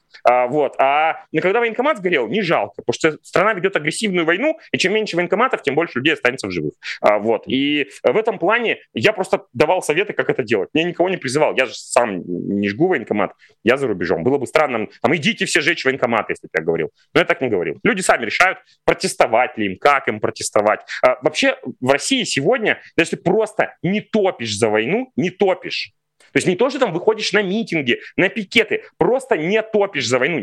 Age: 30-49